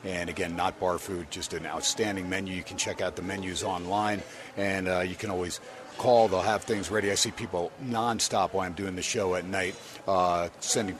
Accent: American